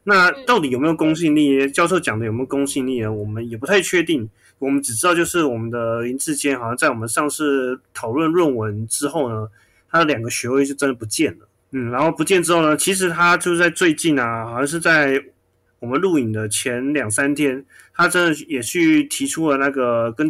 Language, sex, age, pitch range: Chinese, male, 20-39, 120-160 Hz